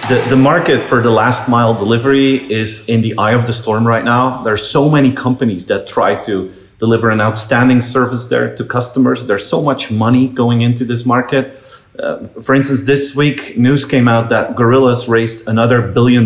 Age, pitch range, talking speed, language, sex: 30-49, 110-130 Hz, 195 wpm, English, male